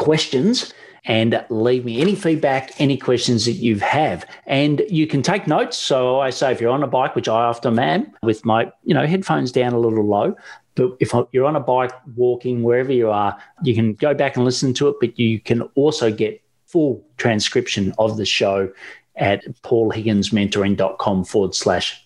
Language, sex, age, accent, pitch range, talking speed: English, male, 40-59, Australian, 115-145 Hz, 190 wpm